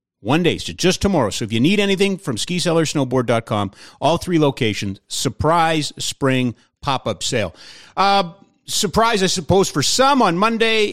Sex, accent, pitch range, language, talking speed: male, American, 105-150 Hz, English, 165 wpm